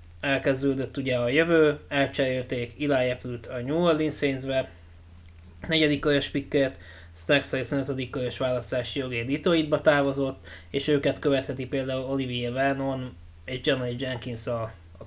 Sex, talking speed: male, 125 wpm